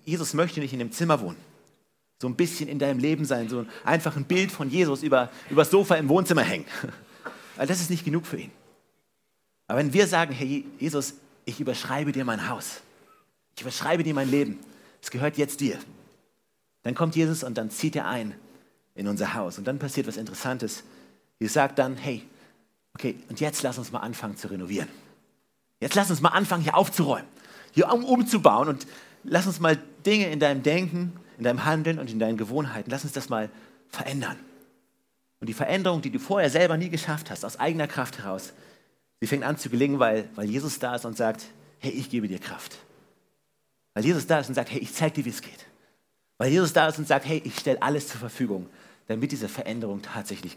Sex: male